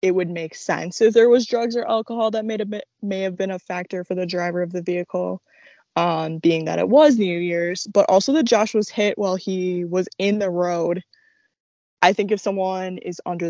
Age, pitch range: 20-39, 170-220 Hz